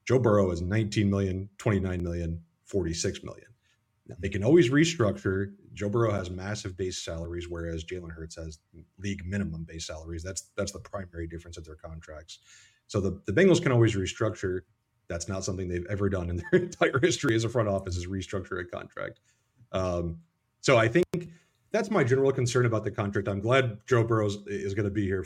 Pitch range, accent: 90-115 Hz, American